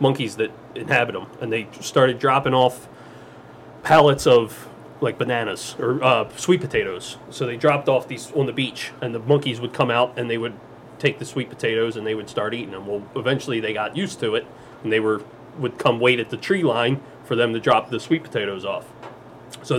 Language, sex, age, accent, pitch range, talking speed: English, male, 30-49, American, 115-140 Hz, 210 wpm